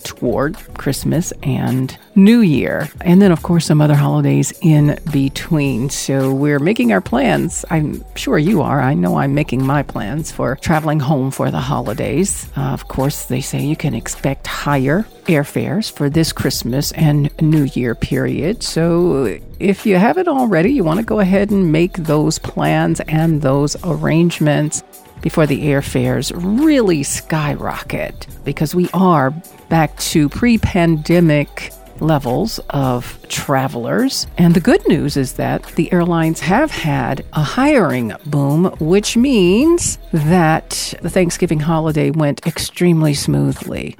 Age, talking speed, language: 50-69, 145 wpm, English